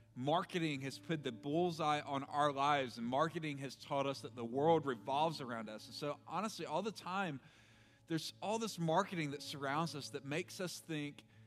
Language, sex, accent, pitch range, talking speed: English, male, American, 130-165 Hz, 190 wpm